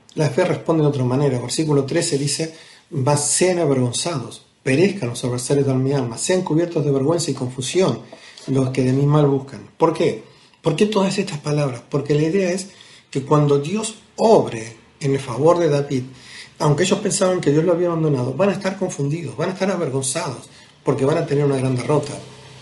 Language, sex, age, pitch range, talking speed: Spanish, male, 40-59, 135-165 Hz, 190 wpm